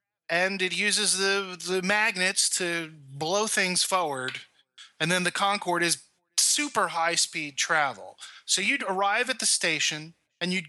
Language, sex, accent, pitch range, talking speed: English, male, American, 160-195 Hz, 150 wpm